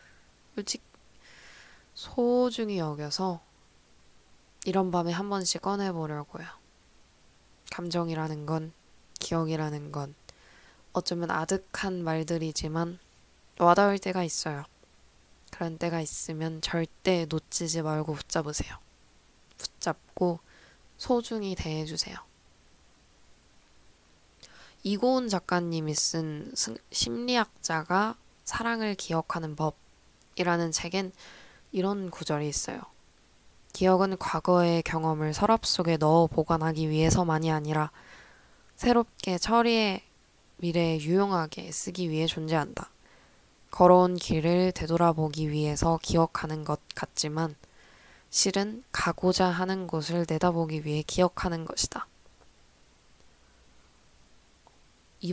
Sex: female